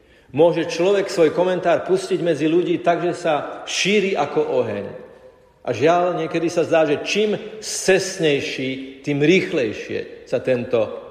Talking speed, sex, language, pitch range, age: 130 wpm, male, Slovak, 125-195 Hz, 40-59